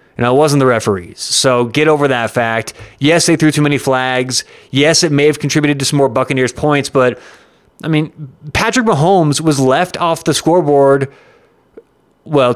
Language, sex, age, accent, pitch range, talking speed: English, male, 30-49, American, 135-170 Hz, 190 wpm